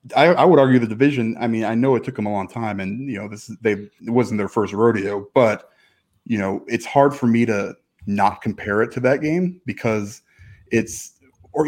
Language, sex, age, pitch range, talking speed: English, male, 30-49, 100-130 Hz, 220 wpm